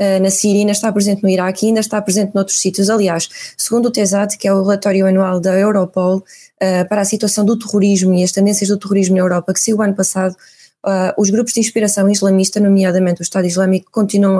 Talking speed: 215 wpm